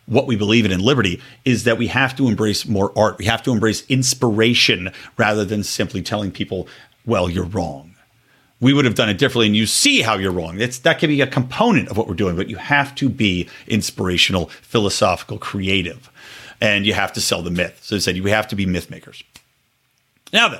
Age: 40-59